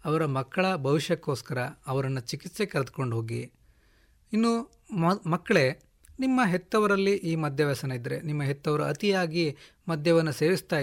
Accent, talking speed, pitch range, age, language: native, 105 wpm, 145-185 Hz, 30-49, Kannada